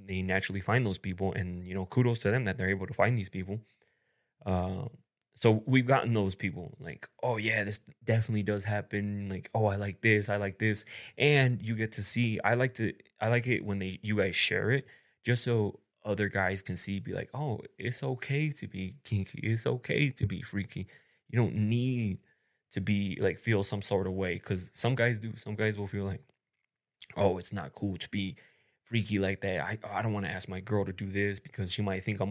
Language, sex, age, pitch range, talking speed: English, male, 20-39, 95-120 Hz, 225 wpm